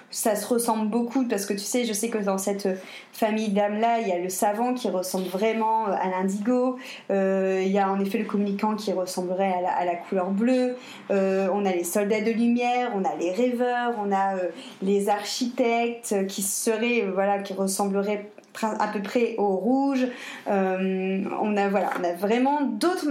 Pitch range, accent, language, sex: 195-240 Hz, French, French, female